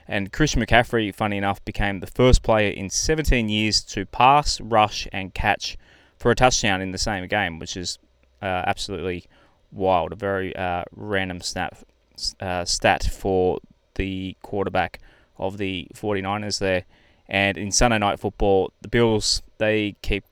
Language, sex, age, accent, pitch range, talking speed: English, male, 20-39, Australian, 95-115 Hz, 150 wpm